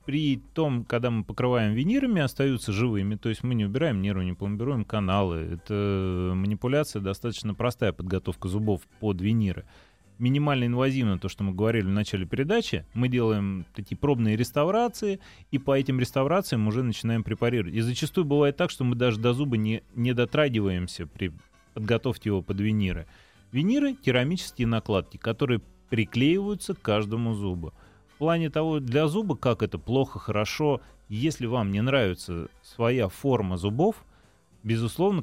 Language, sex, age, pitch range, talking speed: Russian, male, 30-49, 100-130 Hz, 150 wpm